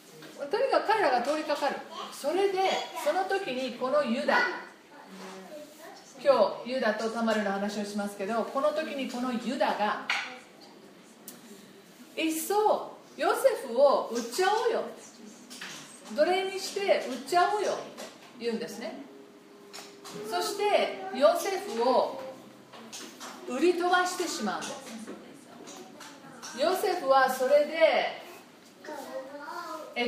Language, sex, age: Japanese, female, 40-59